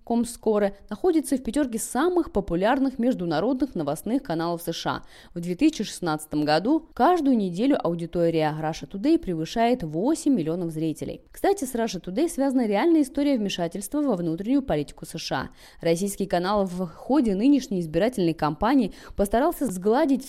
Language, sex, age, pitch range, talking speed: Russian, female, 20-39, 175-275 Hz, 125 wpm